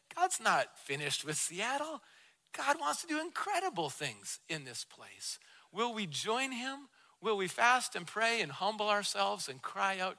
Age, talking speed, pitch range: 40-59, 170 wpm, 185-235 Hz